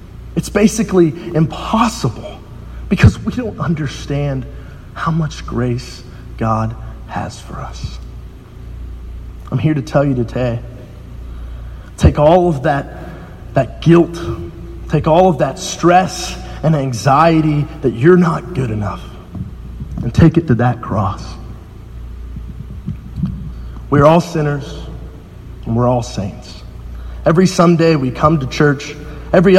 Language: English